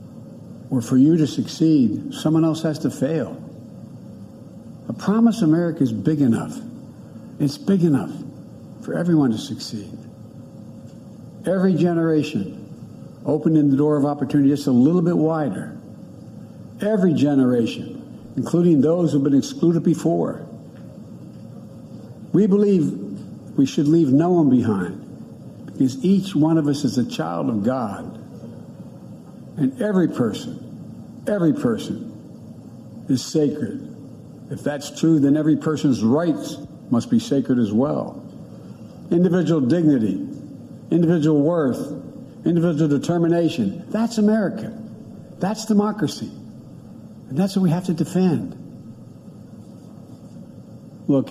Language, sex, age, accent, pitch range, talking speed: English, male, 60-79, American, 135-170 Hz, 115 wpm